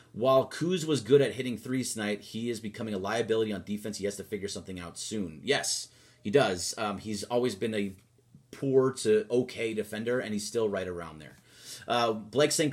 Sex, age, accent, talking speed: male, 30-49, American, 205 wpm